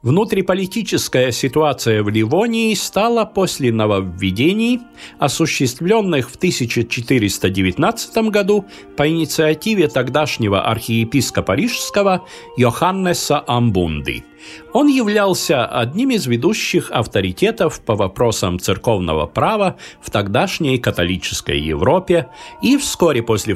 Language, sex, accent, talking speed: Russian, male, native, 90 wpm